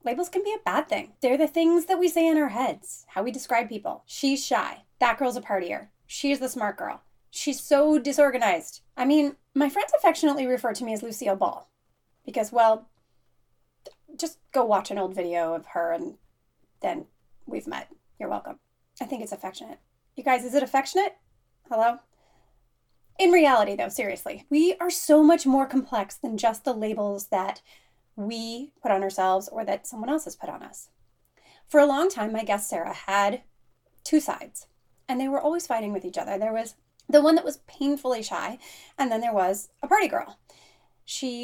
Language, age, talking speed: English, 30-49, 190 wpm